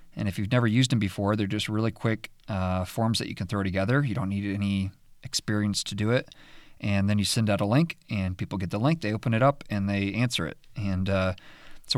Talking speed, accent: 245 wpm, American